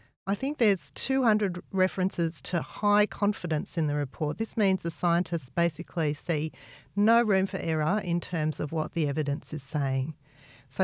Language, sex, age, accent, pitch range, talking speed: English, female, 40-59, Australian, 145-185 Hz, 165 wpm